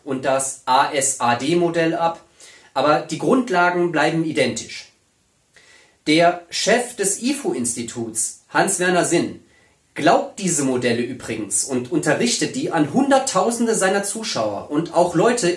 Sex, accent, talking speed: male, German, 115 wpm